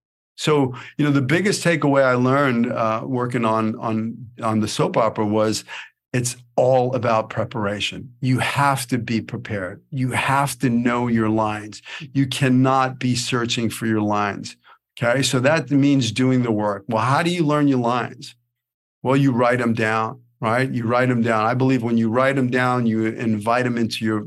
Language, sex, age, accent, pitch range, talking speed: English, male, 40-59, American, 115-135 Hz, 185 wpm